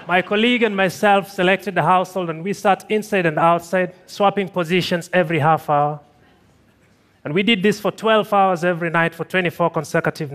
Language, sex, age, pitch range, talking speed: Russian, male, 30-49, 155-195 Hz, 175 wpm